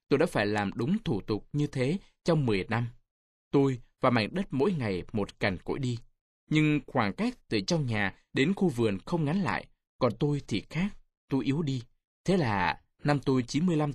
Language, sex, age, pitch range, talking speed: Vietnamese, male, 20-39, 110-155 Hz, 200 wpm